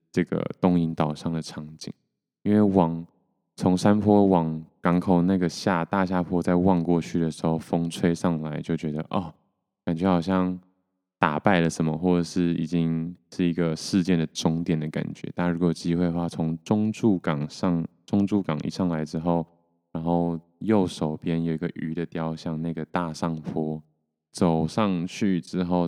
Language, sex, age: Chinese, male, 20-39